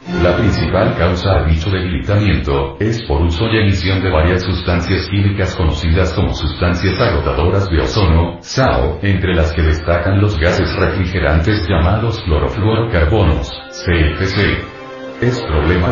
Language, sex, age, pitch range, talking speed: English, male, 50-69, 85-100 Hz, 130 wpm